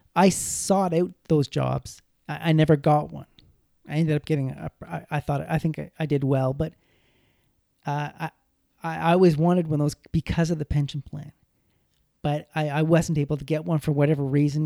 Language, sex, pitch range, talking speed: English, male, 145-175 Hz, 200 wpm